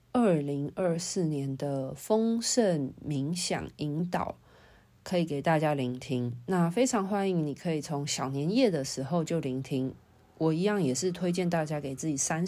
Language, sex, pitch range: Chinese, female, 140-185 Hz